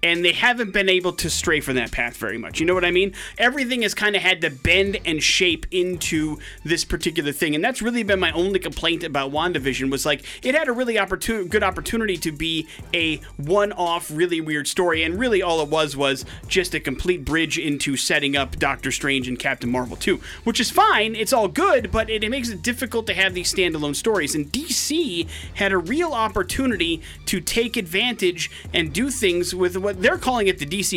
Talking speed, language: 210 wpm, English